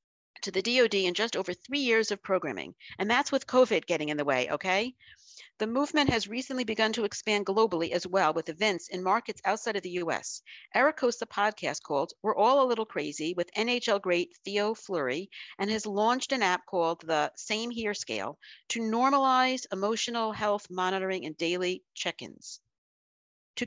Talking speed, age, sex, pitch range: 180 wpm, 50-69, female, 175-240 Hz